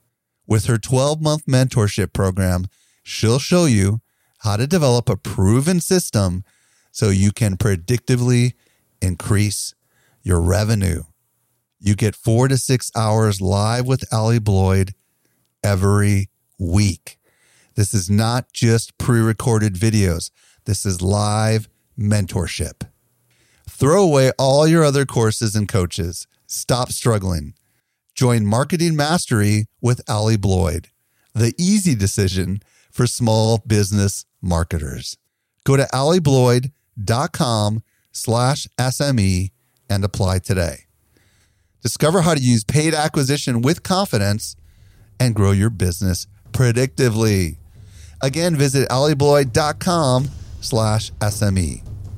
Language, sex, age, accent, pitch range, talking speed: English, male, 40-59, American, 100-125 Hz, 105 wpm